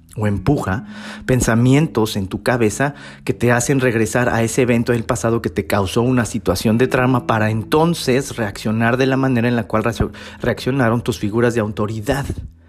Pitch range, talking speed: 105-130 Hz, 170 wpm